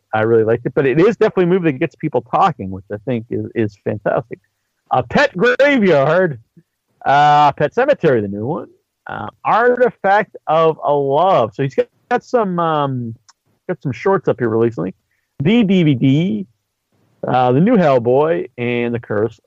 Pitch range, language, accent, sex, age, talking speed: 125-200 Hz, English, American, male, 50-69, 170 wpm